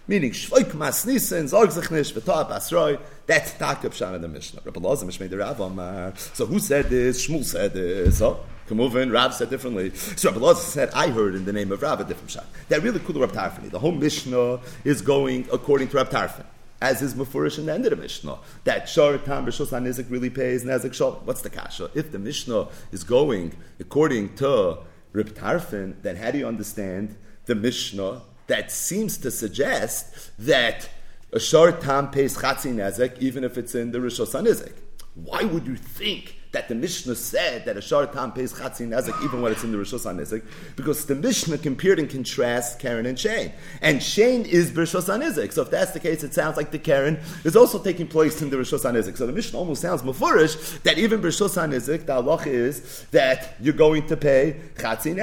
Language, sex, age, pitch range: English, male, 40-59, 120-155 Hz